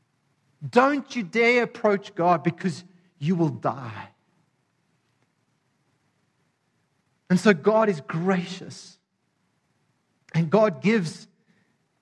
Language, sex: English, male